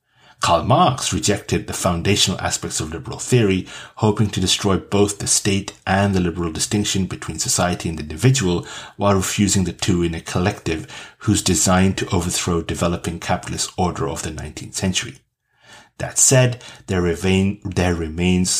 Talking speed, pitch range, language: 155 wpm, 90-110 Hz, English